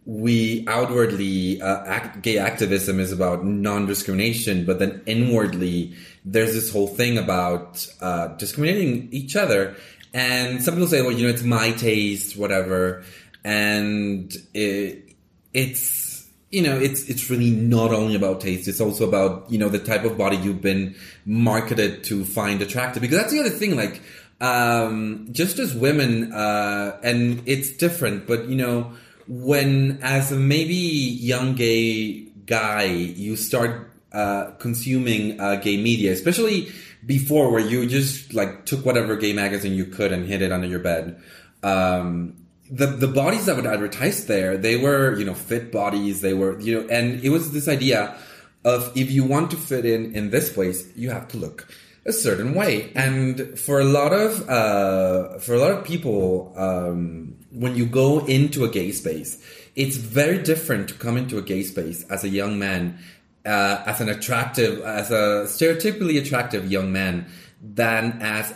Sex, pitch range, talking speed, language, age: male, 100-130 Hz, 170 wpm, English, 20-39